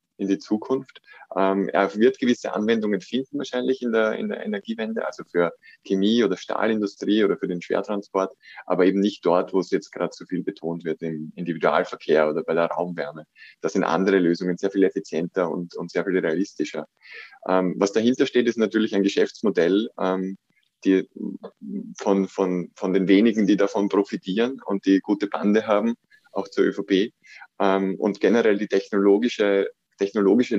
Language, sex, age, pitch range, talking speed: German, male, 20-39, 95-115 Hz, 170 wpm